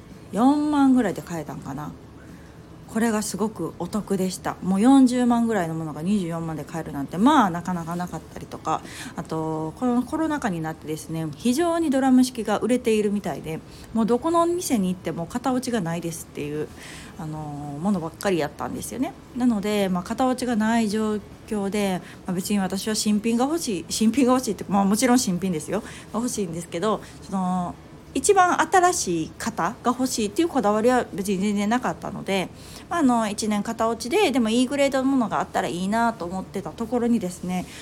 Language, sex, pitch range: Japanese, female, 170-245 Hz